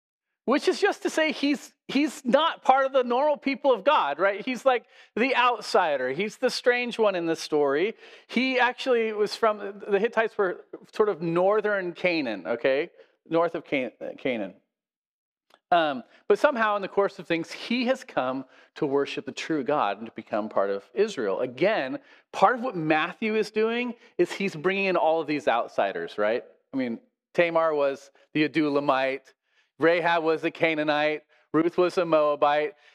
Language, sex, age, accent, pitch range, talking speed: English, male, 40-59, American, 155-255 Hz, 175 wpm